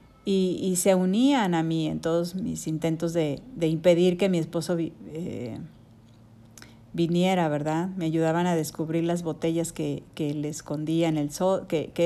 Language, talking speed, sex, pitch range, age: Spanish, 130 wpm, female, 155-185 Hz, 40-59